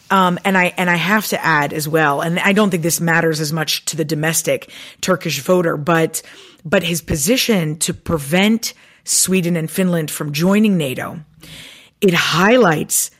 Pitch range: 165-200 Hz